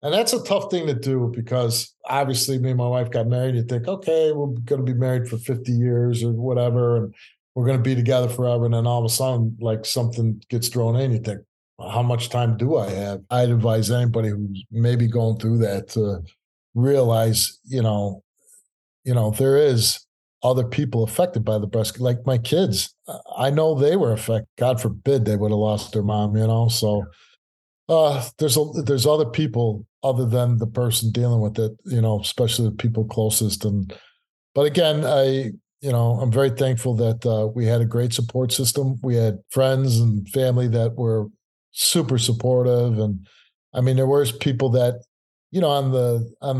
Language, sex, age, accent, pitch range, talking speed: English, male, 50-69, American, 115-130 Hz, 200 wpm